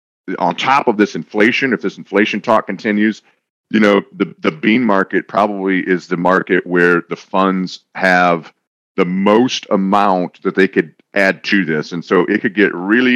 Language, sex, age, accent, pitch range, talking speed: English, male, 40-59, American, 85-105 Hz, 180 wpm